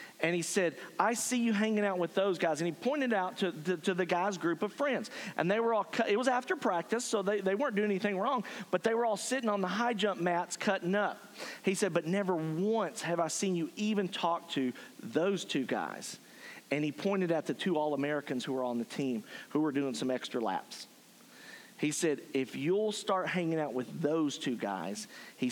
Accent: American